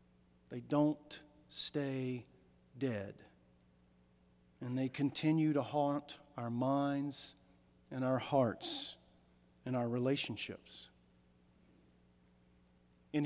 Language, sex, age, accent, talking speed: English, male, 40-59, American, 80 wpm